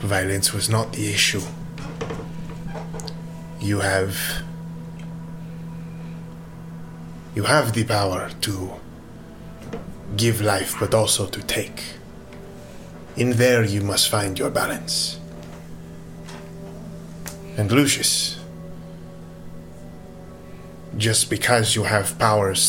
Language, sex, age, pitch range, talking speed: English, male, 20-39, 80-115 Hz, 85 wpm